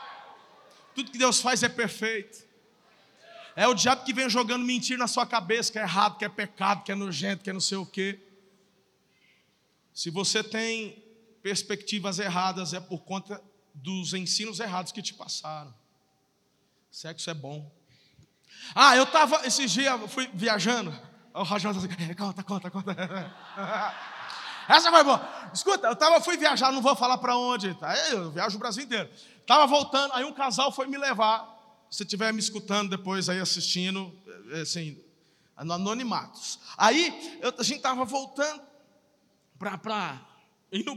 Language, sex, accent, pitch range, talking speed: Portuguese, male, Brazilian, 190-250 Hz, 145 wpm